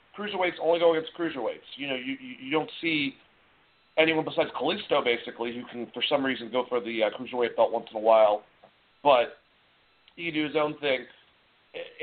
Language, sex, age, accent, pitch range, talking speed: English, male, 40-59, American, 120-170 Hz, 190 wpm